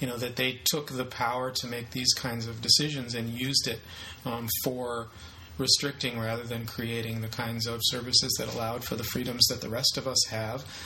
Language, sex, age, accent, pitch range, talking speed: English, male, 40-59, American, 115-135 Hz, 205 wpm